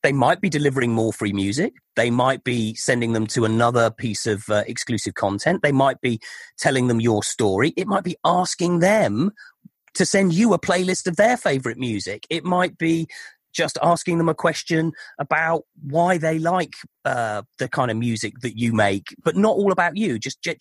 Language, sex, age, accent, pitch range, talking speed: English, male, 40-59, British, 115-170 Hz, 190 wpm